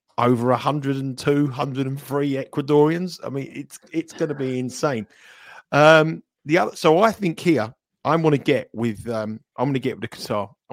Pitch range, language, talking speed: 120-165 Hz, English, 215 wpm